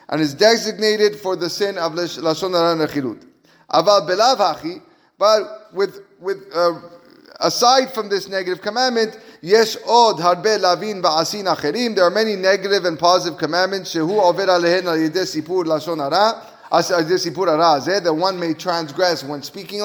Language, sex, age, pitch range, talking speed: English, male, 30-49, 180-225 Hz, 110 wpm